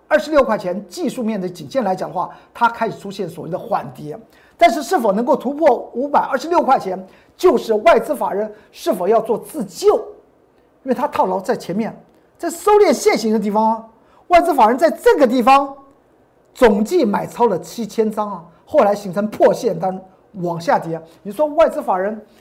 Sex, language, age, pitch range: male, Chinese, 50-69, 190-280 Hz